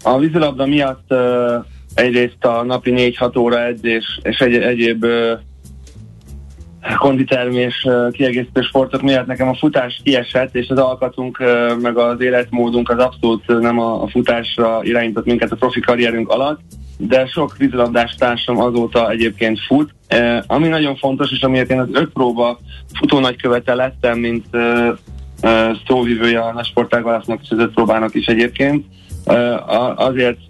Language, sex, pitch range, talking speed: Hungarian, male, 110-125 Hz, 130 wpm